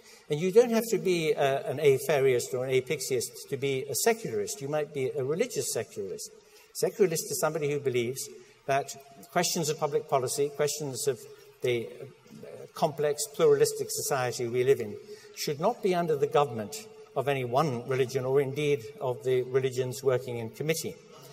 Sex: male